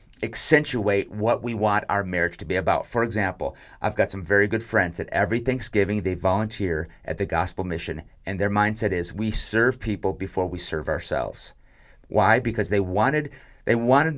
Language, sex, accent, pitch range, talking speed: English, male, American, 95-115 Hz, 180 wpm